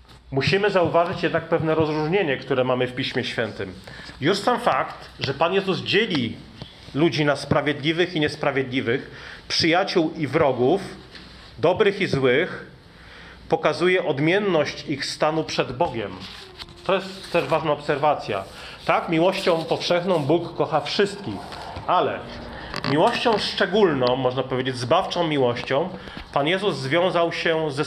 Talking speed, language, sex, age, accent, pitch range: 125 wpm, Polish, male, 40-59, native, 135-165 Hz